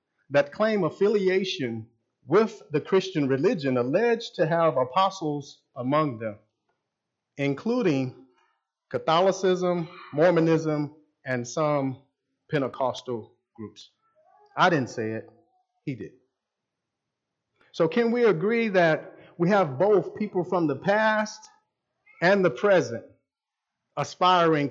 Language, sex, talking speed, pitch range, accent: English, male, 100 wpm, 140-225 Hz, American